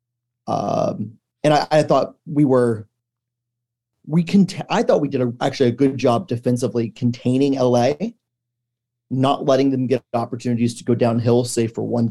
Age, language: 30-49, English